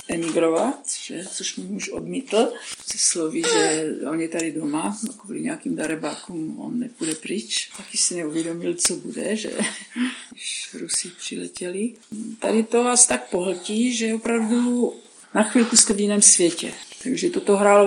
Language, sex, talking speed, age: Czech, female, 145 wpm, 50-69